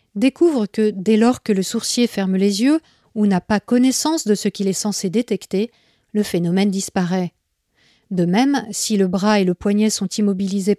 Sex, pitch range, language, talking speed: female, 190-225 Hz, French, 185 wpm